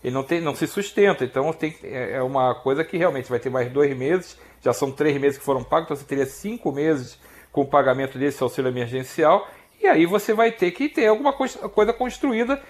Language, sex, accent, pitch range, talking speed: Portuguese, male, Brazilian, 145-225 Hz, 210 wpm